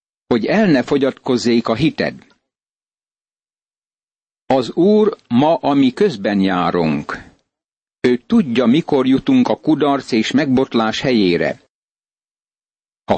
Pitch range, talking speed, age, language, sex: 115-155 Hz, 100 wpm, 50-69, Hungarian, male